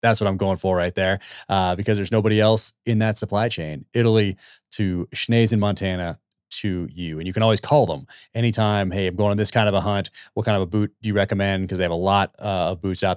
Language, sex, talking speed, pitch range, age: English, male, 255 wpm, 95-110 Hz, 30-49